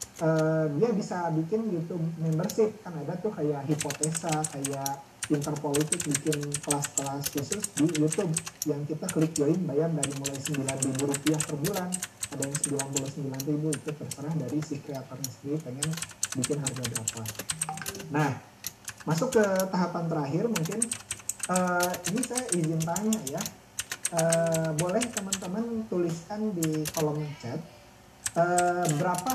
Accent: native